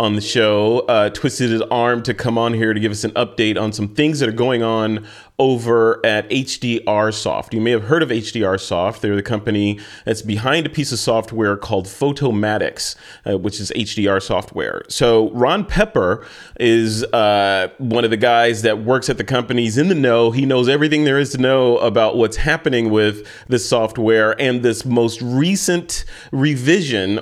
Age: 30-49